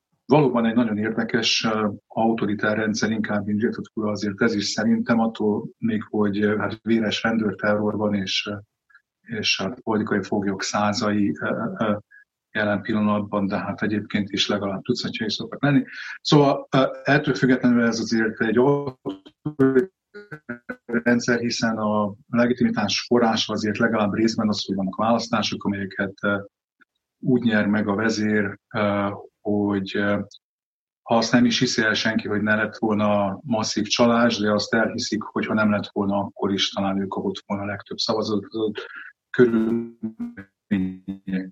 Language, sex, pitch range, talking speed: Hungarian, male, 105-120 Hz, 140 wpm